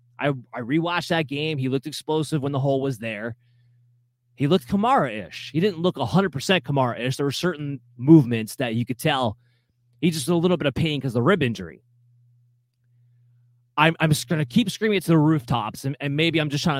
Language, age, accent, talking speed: English, 30-49, American, 205 wpm